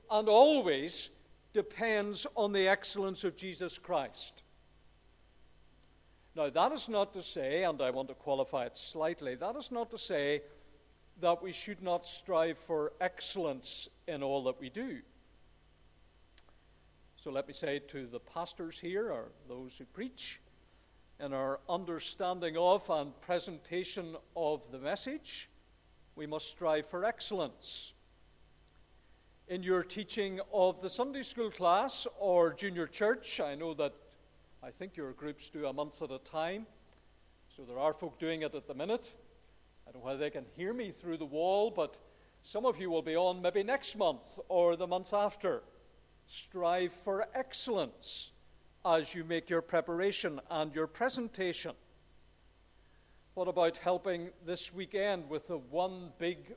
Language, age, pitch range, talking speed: English, 50-69, 130-190 Hz, 150 wpm